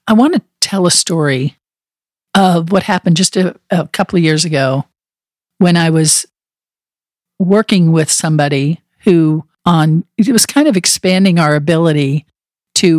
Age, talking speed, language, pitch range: 50-69, 150 wpm, English, 155-200 Hz